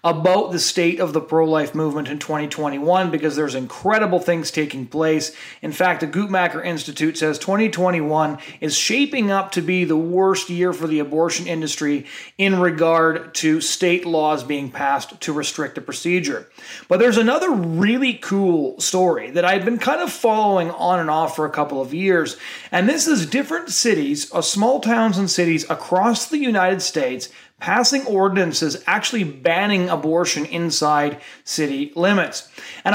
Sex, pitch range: male, 155-195 Hz